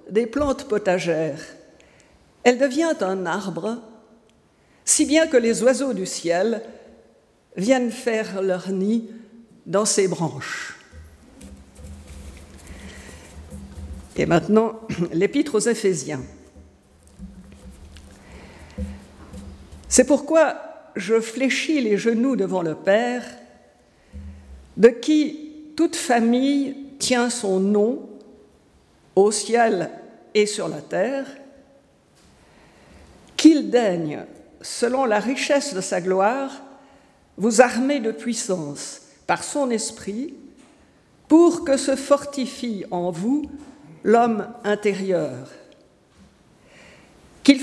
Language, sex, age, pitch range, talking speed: French, female, 50-69, 185-280 Hz, 90 wpm